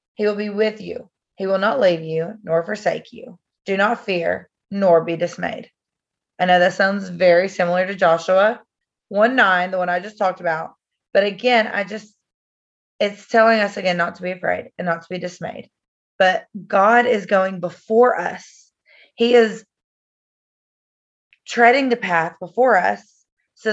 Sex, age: female, 30-49